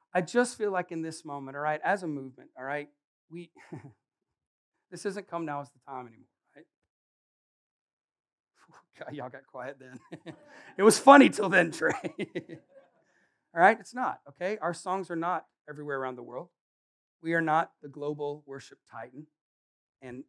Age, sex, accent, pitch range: 40-59, male, American, 135-170 Hz